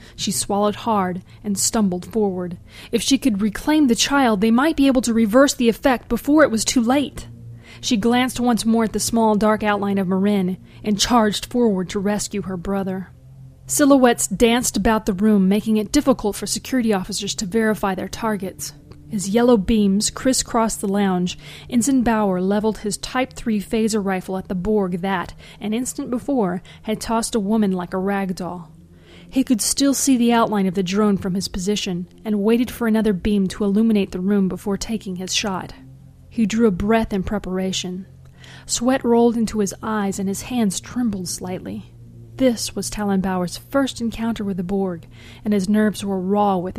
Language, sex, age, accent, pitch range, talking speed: English, female, 30-49, American, 190-230 Hz, 180 wpm